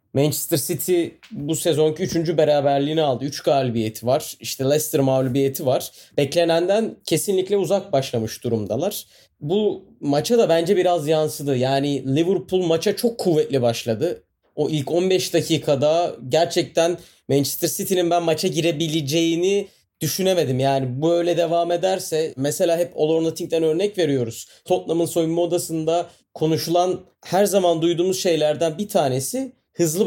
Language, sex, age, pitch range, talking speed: Turkish, male, 30-49, 150-185 Hz, 130 wpm